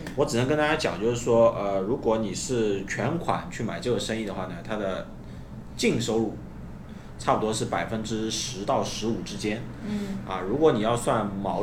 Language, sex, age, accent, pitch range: Chinese, male, 20-39, native, 95-115 Hz